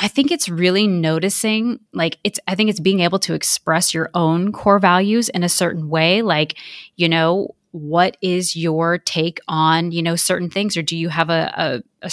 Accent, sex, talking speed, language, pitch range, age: American, female, 205 wpm, English, 160-190 Hz, 20-39